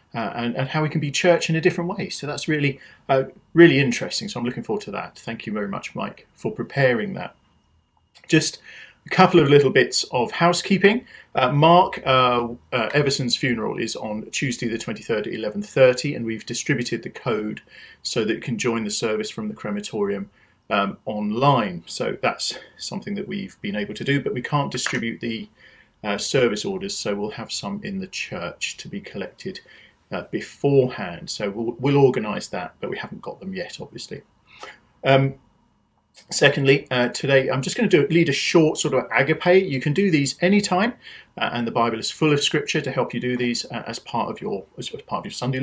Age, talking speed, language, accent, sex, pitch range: 40-59, 205 wpm, English, British, male, 120-175 Hz